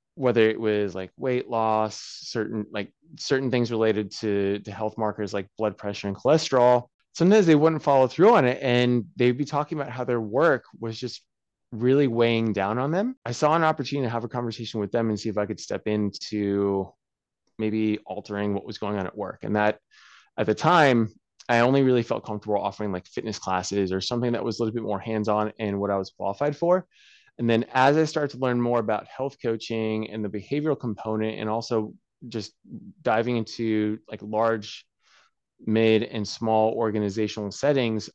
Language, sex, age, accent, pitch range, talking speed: English, male, 20-39, American, 105-130 Hz, 195 wpm